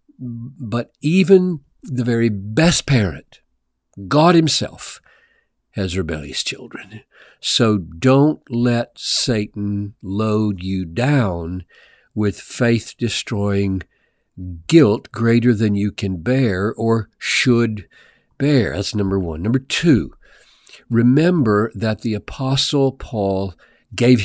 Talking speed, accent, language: 100 wpm, American, English